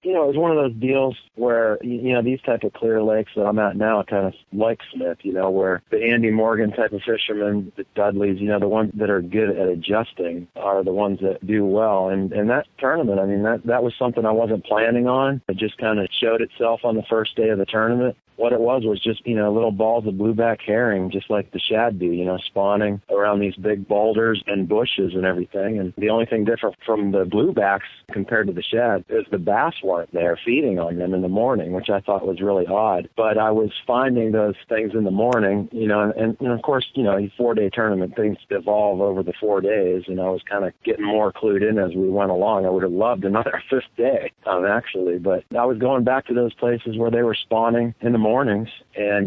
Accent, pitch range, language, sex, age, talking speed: American, 100-115 Hz, English, male, 40-59, 240 wpm